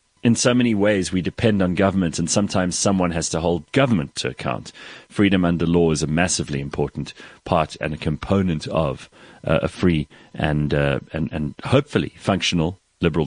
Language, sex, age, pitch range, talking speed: English, male, 40-59, 85-115 Hz, 175 wpm